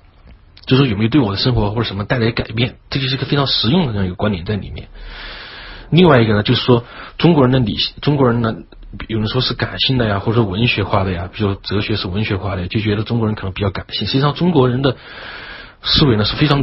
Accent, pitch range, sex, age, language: native, 100-130 Hz, male, 30-49, Chinese